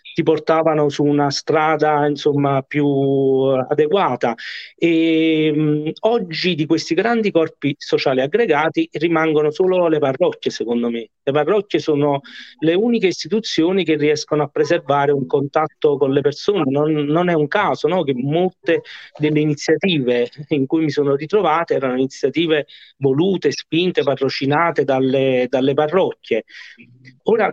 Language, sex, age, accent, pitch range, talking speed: Italian, male, 40-59, native, 135-170 Hz, 135 wpm